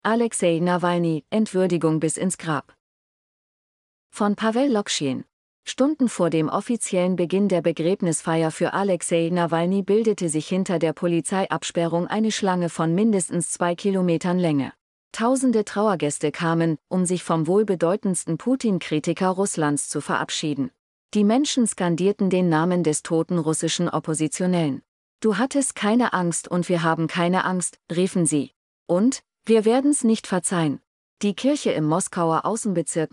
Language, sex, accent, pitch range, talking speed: German, female, German, 165-200 Hz, 130 wpm